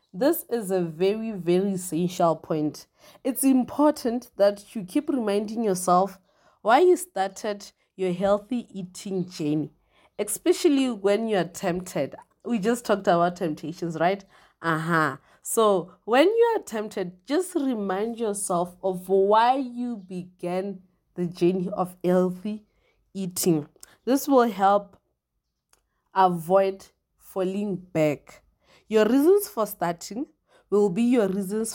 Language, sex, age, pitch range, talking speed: English, female, 30-49, 180-225 Hz, 125 wpm